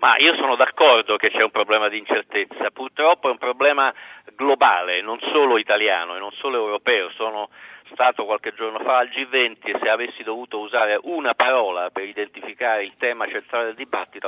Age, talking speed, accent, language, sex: 50-69, 180 wpm, native, Italian, male